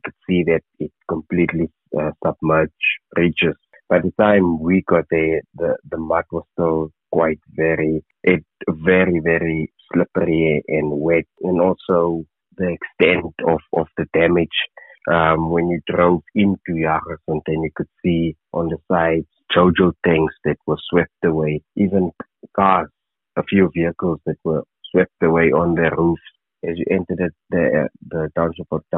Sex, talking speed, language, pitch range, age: male, 155 wpm, English, 80-85 Hz, 30-49